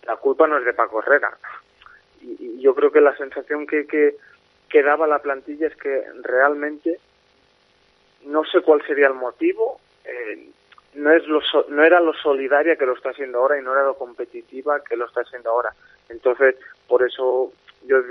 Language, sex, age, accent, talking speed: Spanish, male, 20-39, Spanish, 190 wpm